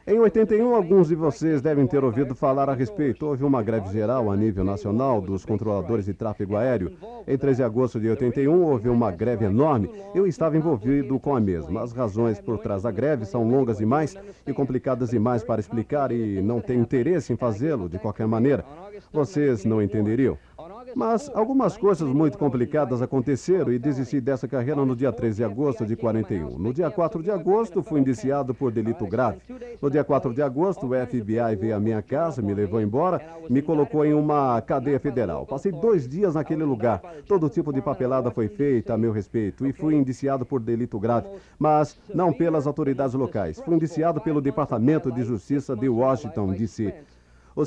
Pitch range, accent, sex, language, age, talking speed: 115-150 Hz, Brazilian, male, Portuguese, 50-69, 190 wpm